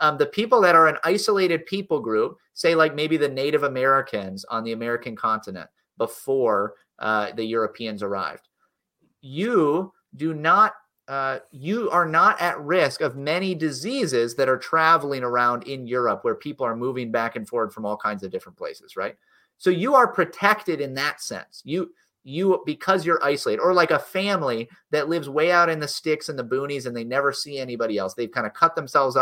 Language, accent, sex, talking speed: English, American, male, 190 wpm